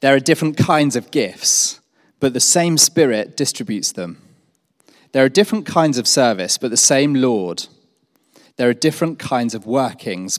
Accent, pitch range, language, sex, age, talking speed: British, 130-190 Hz, English, male, 30-49, 160 wpm